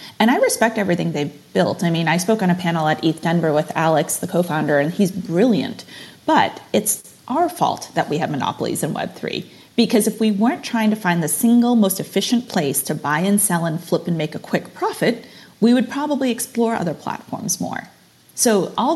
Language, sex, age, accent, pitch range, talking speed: English, female, 30-49, American, 165-220 Hz, 205 wpm